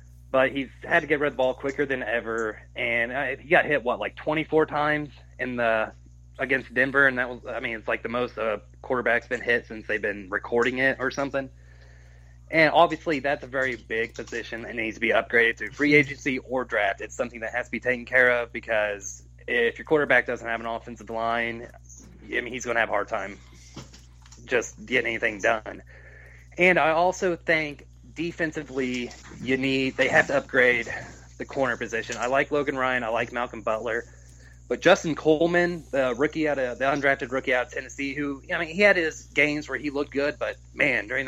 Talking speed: 205 wpm